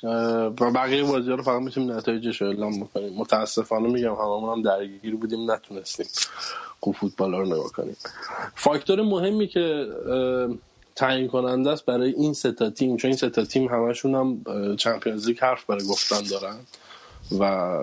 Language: Persian